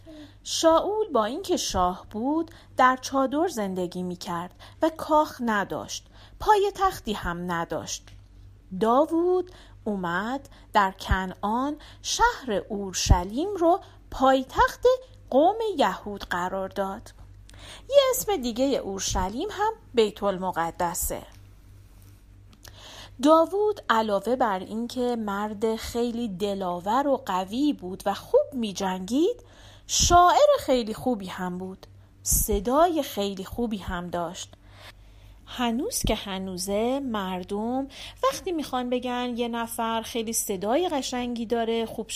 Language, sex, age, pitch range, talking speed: Persian, female, 40-59, 180-275 Hz, 105 wpm